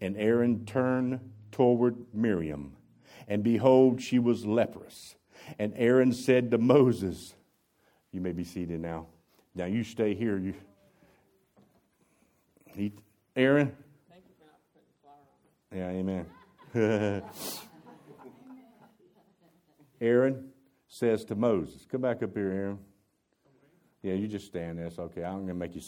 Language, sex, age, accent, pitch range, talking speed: English, male, 50-69, American, 100-140 Hz, 110 wpm